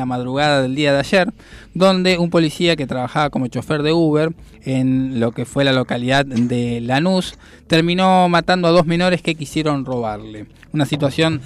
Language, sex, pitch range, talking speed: Spanish, male, 130-180 Hz, 175 wpm